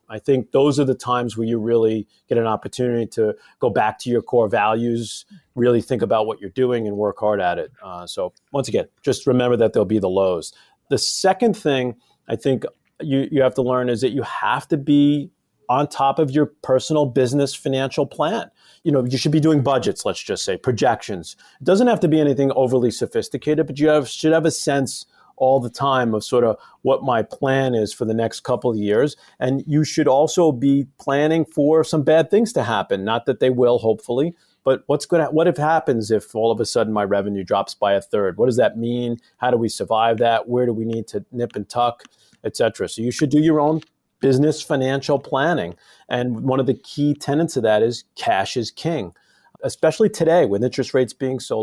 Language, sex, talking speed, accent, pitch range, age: English, male, 220 wpm, American, 115-145 Hz, 40-59